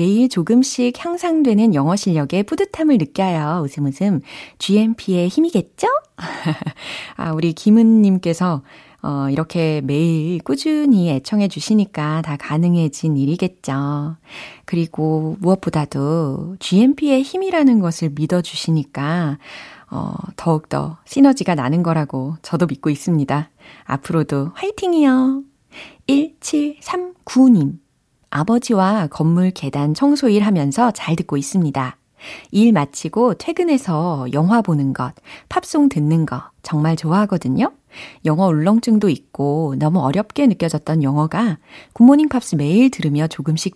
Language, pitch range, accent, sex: Korean, 150-225 Hz, native, female